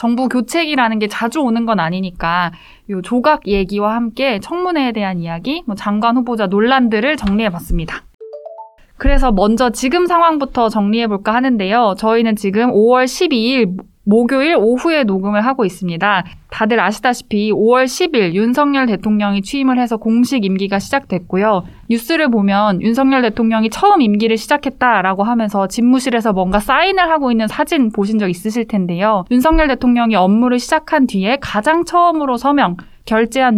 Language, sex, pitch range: Korean, female, 205-270 Hz